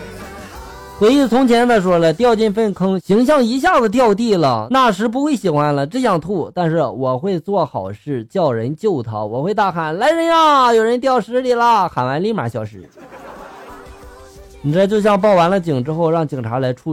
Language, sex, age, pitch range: Chinese, male, 20-39, 120-200 Hz